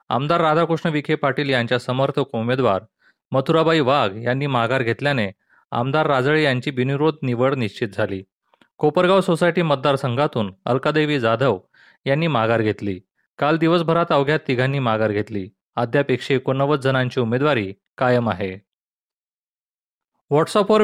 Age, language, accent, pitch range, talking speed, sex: 30-49, Marathi, native, 120-150 Hz, 115 wpm, male